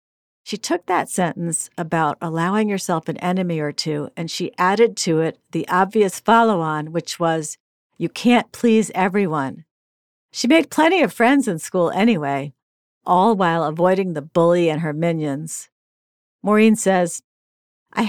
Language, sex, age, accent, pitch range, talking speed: English, female, 50-69, American, 160-210 Hz, 145 wpm